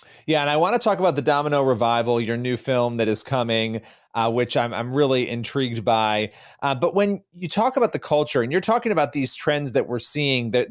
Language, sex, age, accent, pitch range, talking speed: English, male, 30-49, American, 125-160 Hz, 230 wpm